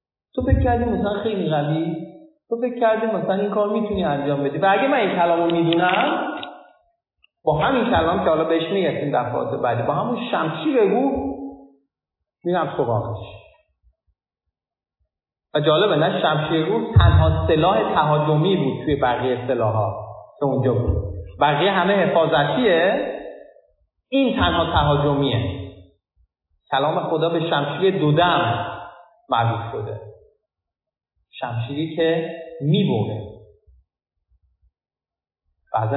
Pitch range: 120-195 Hz